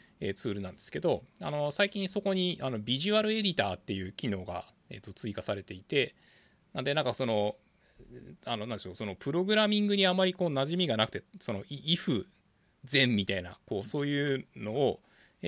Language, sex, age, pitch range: Japanese, male, 20-39, 105-175 Hz